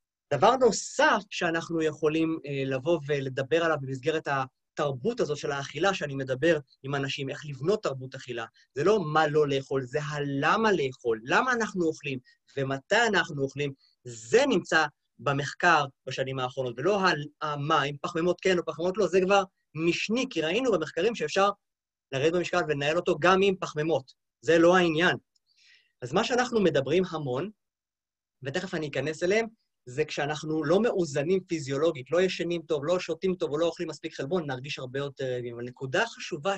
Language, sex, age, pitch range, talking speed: Hebrew, male, 30-49, 140-195 Hz, 160 wpm